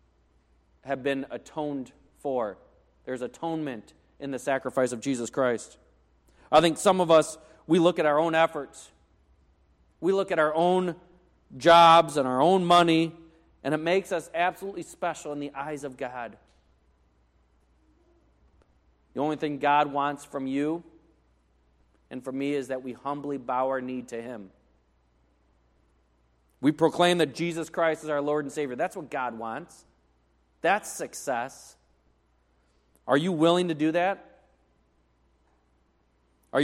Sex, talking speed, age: male, 140 wpm, 30-49